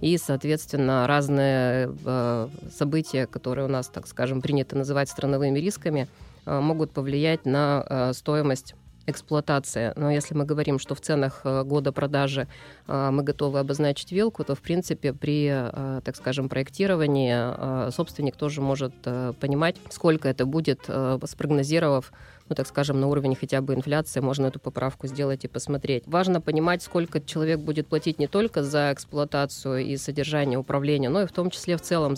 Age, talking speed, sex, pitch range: 20-39, 165 wpm, female, 135-155 Hz